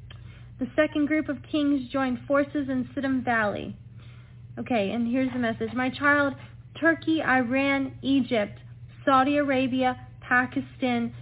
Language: English